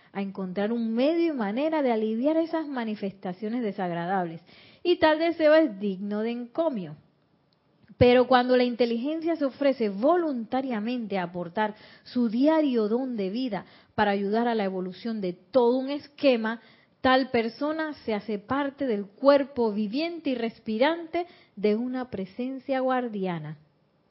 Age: 30-49